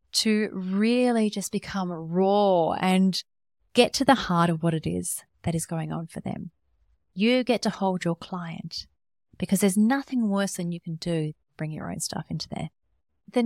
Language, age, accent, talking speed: English, 30-49, Australian, 185 wpm